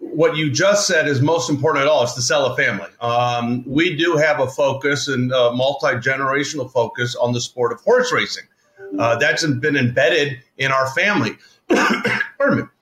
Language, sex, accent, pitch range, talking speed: English, male, American, 135-185 Hz, 180 wpm